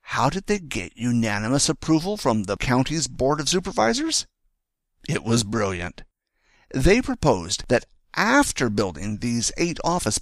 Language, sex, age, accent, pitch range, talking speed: English, male, 50-69, American, 105-160 Hz, 135 wpm